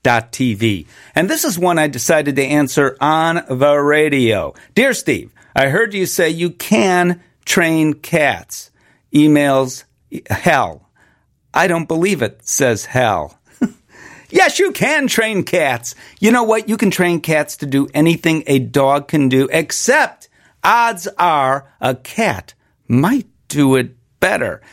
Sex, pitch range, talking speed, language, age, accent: male, 135-195 Hz, 140 wpm, English, 50-69, American